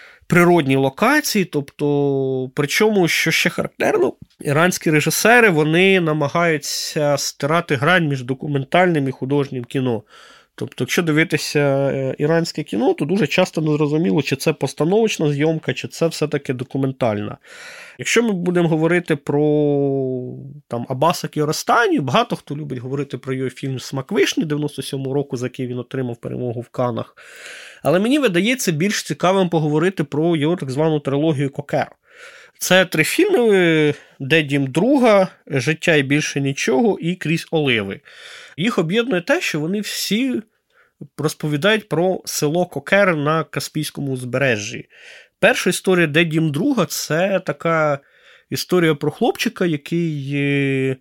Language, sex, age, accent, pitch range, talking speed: Ukrainian, male, 20-39, native, 140-180 Hz, 130 wpm